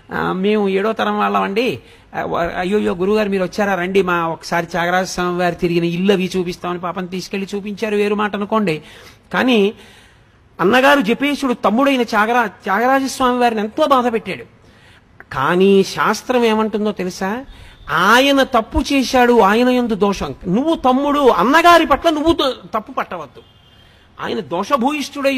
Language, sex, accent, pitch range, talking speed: Telugu, male, native, 180-250 Hz, 125 wpm